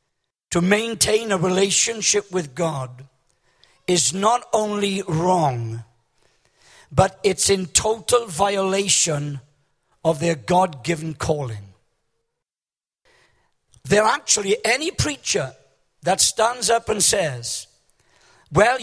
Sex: male